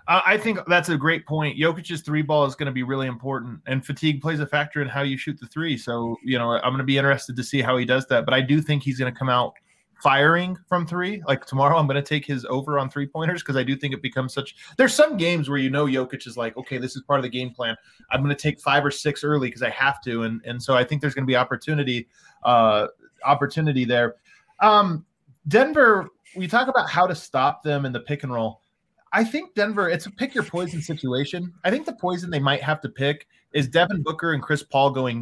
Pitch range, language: 130-175 Hz, English